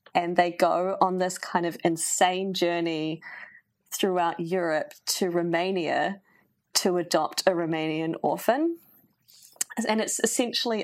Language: English